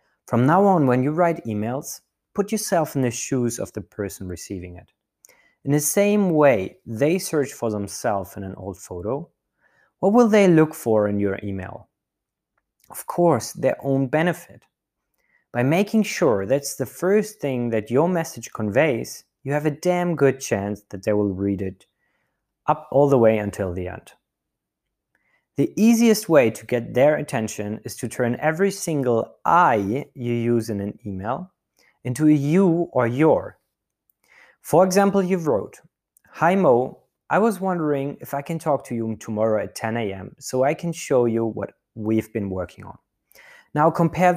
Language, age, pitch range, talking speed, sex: English, 30-49, 110-165 Hz, 170 wpm, male